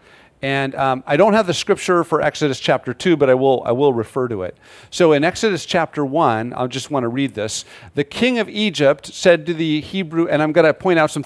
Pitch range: 125-175 Hz